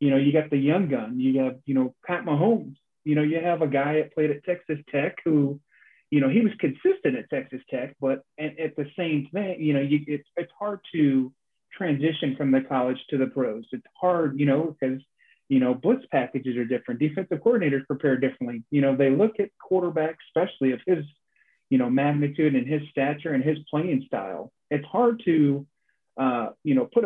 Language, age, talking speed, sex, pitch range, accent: English, 30-49, 205 wpm, male, 135-160 Hz, American